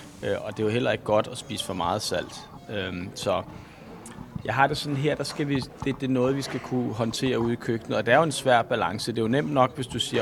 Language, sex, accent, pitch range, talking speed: Danish, male, native, 110-130 Hz, 270 wpm